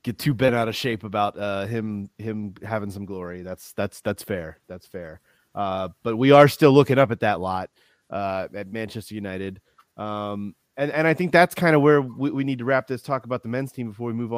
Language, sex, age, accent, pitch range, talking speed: English, male, 30-49, American, 110-135 Hz, 235 wpm